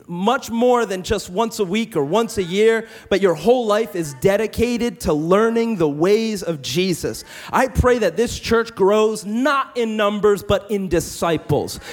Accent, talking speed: American, 175 wpm